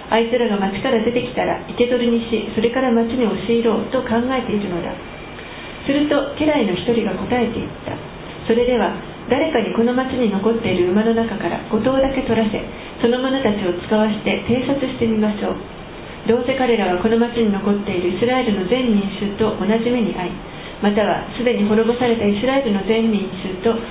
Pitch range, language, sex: 210-245 Hz, Japanese, female